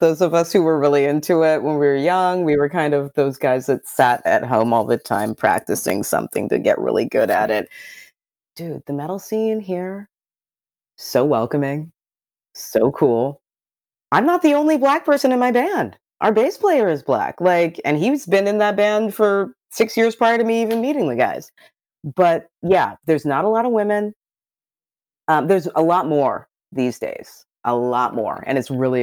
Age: 30-49